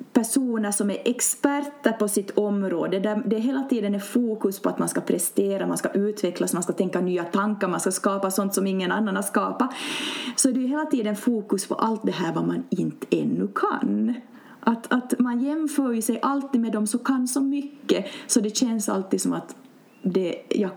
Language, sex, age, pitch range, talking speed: Swedish, female, 30-49, 205-275 Hz, 205 wpm